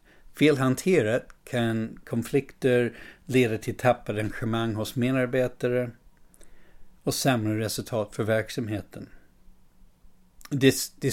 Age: 60-79